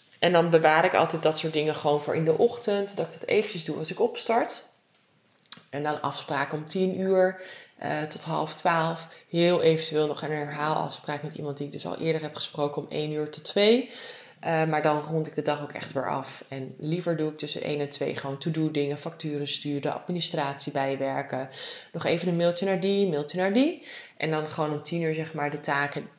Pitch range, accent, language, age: 145-180 Hz, Dutch, English, 20-39